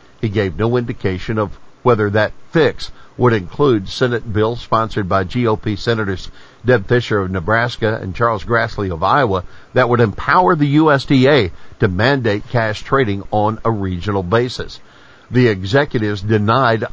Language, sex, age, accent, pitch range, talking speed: English, male, 60-79, American, 100-125 Hz, 145 wpm